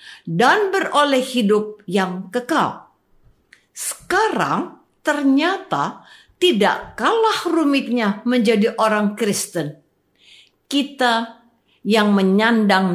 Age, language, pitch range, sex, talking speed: 50-69, Indonesian, 200-290 Hz, female, 75 wpm